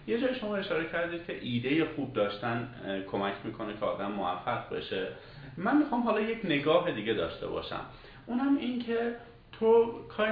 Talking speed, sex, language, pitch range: 155 wpm, male, Persian, 110-175 Hz